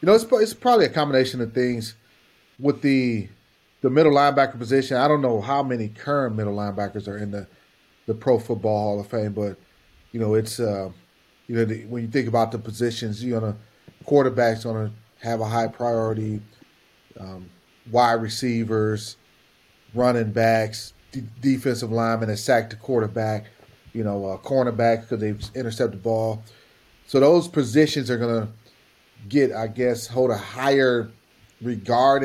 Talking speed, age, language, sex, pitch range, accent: 160 wpm, 30-49, English, male, 110-130 Hz, American